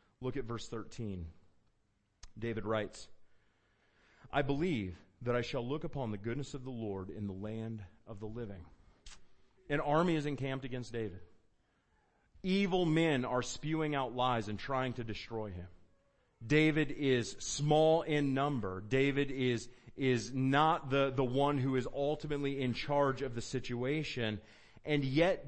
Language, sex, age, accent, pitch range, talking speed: English, male, 30-49, American, 110-145 Hz, 150 wpm